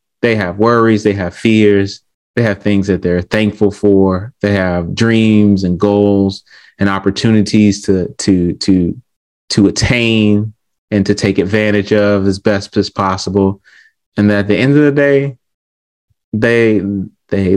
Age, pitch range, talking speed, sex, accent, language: 30-49, 95-115 Hz, 145 wpm, male, American, English